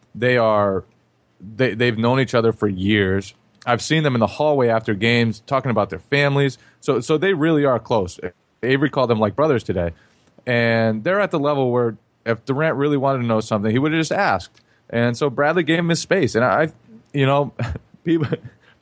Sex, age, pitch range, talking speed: male, 30-49, 110-165 Hz, 200 wpm